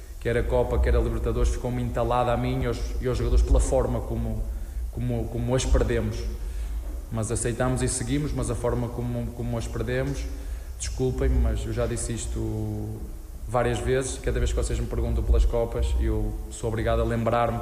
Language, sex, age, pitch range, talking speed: Portuguese, male, 20-39, 75-125 Hz, 185 wpm